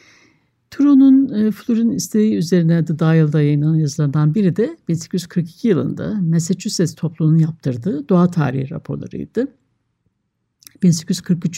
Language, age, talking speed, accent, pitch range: Turkish, 60-79, 105 wpm, native, 150-180 Hz